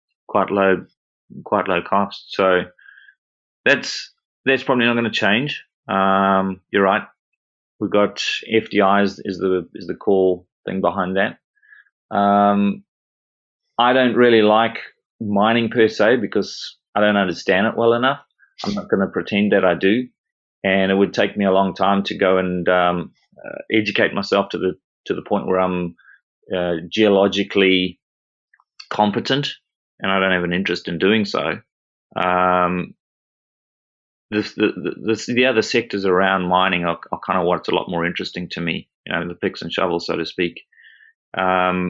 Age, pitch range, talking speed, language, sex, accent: 30-49, 90-105 Hz, 165 wpm, English, male, Australian